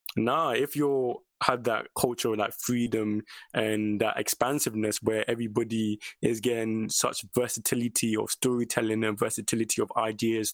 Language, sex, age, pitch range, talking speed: English, male, 20-39, 110-125 Hz, 135 wpm